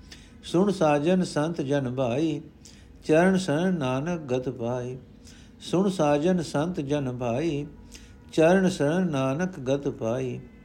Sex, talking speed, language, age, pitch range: male, 115 wpm, Punjabi, 60-79, 125-160 Hz